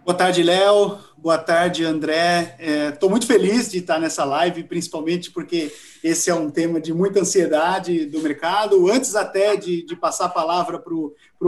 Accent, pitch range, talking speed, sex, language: Brazilian, 170-235 Hz, 165 wpm, male, Portuguese